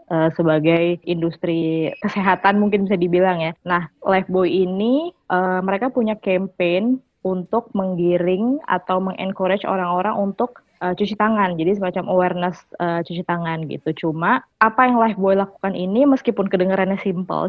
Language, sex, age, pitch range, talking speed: English, female, 20-39, 170-200 Hz, 135 wpm